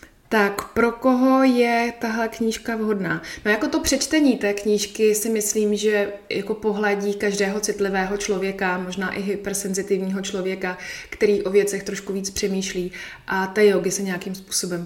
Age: 20-39